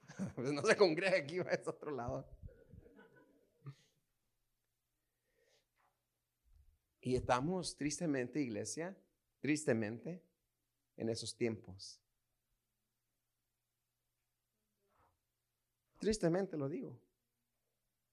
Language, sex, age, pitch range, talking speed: Spanish, male, 30-49, 100-125 Hz, 65 wpm